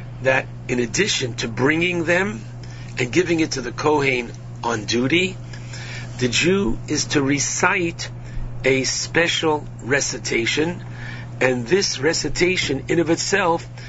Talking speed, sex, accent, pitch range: 120 wpm, male, American, 120-150 Hz